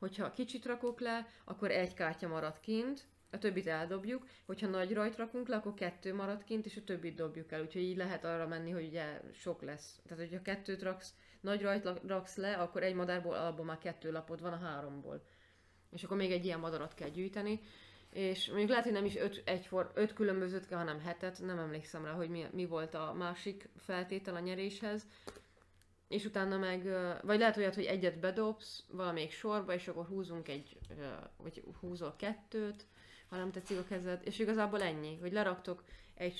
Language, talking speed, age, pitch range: Hungarian, 190 wpm, 20-39, 165-200 Hz